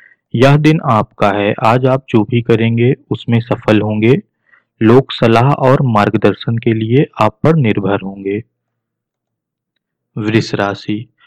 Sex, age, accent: male, 40-59, native